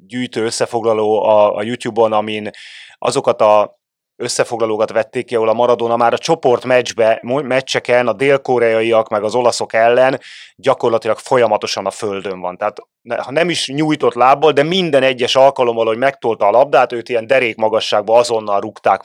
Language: Hungarian